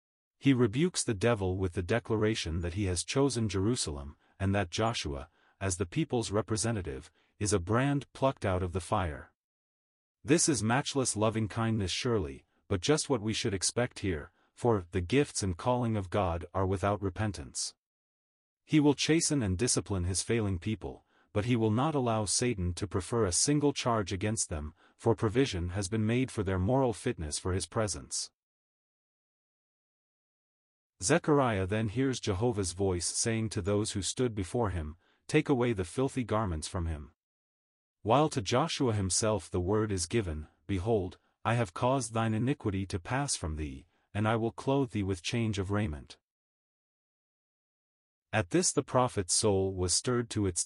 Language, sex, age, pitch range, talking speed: English, male, 40-59, 95-120 Hz, 160 wpm